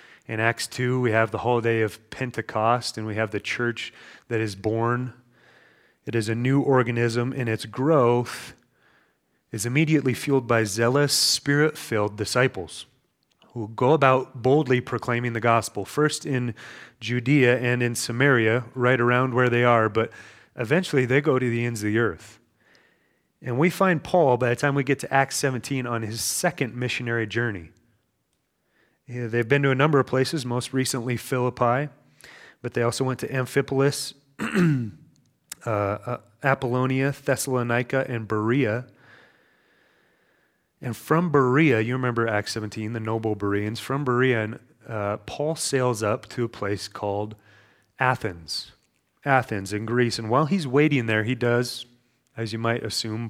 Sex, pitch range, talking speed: male, 115-135 Hz, 150 wpm